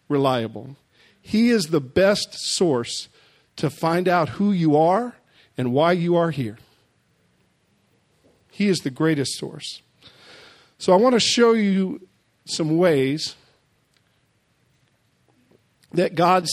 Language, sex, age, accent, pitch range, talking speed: English, male, 50-69, American, 145-195 Hz, 115 wpm